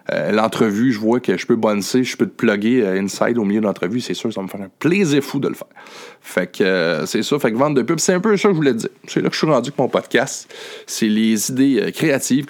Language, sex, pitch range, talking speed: French, male, 110-155 Hz, 300 wpm